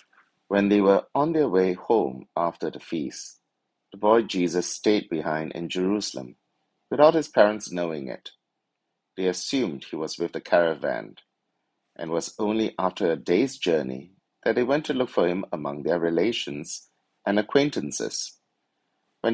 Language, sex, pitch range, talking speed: English, male, 85-115 Hz, 155 wpm